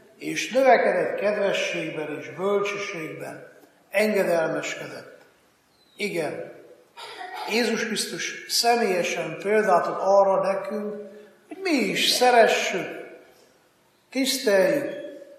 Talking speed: 70 wpm